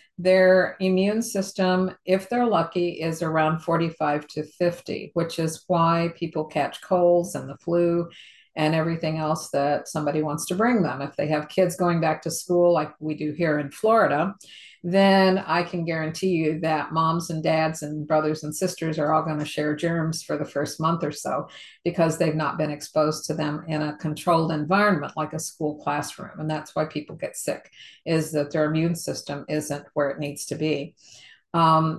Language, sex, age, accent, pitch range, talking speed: English, female, 50-69, American, 155-180 Hz, 190 wpm